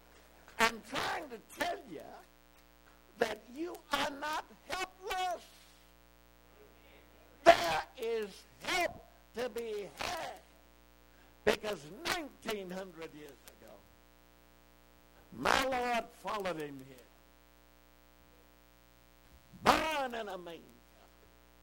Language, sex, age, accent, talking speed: English, male, 60-79, American, 80 wpm